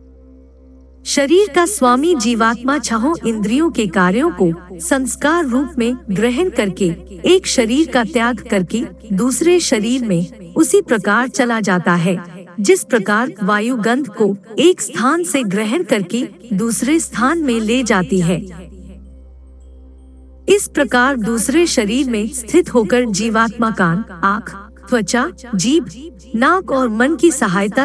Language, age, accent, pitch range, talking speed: Hindi, 50-69, native, 190-265 Hz, 130 wpm